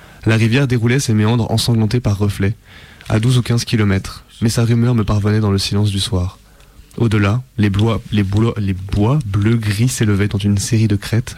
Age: 20-39